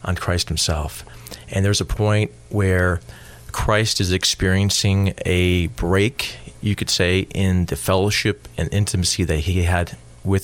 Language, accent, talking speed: English, American, 145 wpm